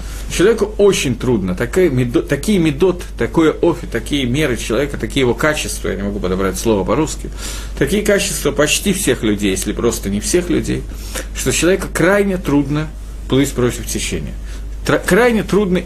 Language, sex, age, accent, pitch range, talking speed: Russian, male, 50-69, native, 110-175 Hz, 150 wpm